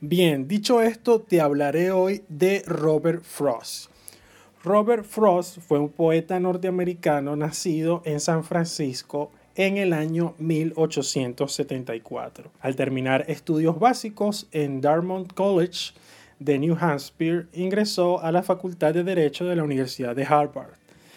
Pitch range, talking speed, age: 145-185 Hz, 125 wpm, 30-49